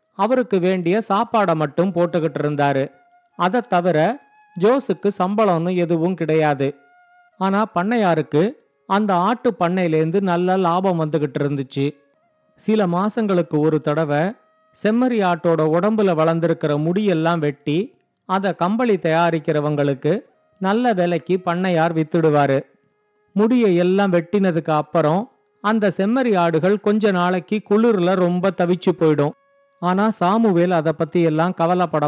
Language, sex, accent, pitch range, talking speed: Tamil, male, native, 165-210 Hz, 105 wpm